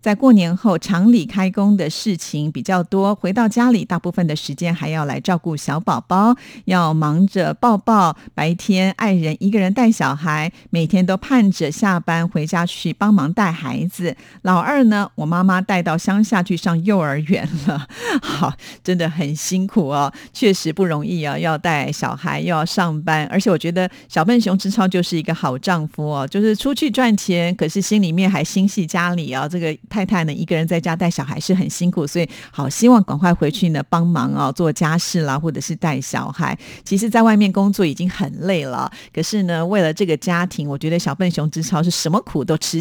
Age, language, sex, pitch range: 50-69, Chinese, female, 160-200 Hz